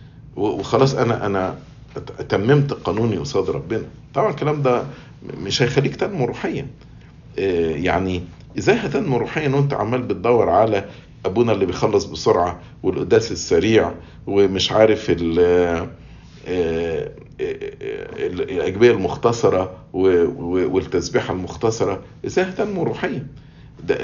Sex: male